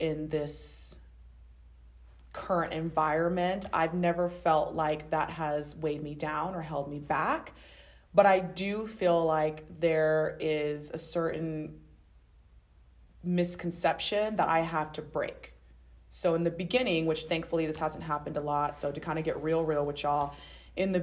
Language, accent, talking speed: English, American, 155 wpm